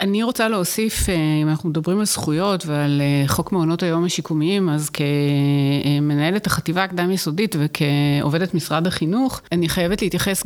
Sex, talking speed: female, 140 wpm